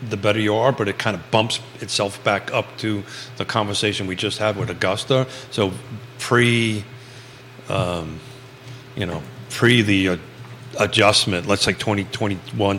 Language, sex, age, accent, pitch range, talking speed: English, male, 40-59, American, 100-125 Hz, 150 wpm